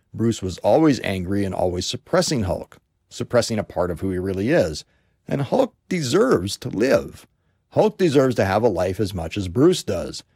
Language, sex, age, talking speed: English, male, 50-69, 185 wpm